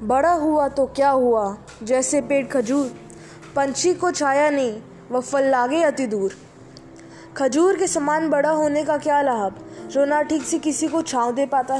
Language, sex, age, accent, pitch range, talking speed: English, female, 20-39, Indian, 245-310 Hz, 165 wpm